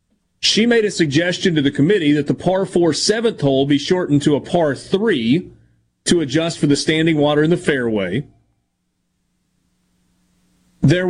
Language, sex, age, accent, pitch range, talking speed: English, male, 40-59, American, 140-180 Hz, 140 wpm